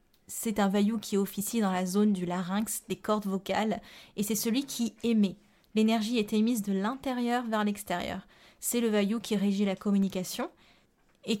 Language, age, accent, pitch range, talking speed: French, 20-39, French, 195-225 Hz, 175 wpm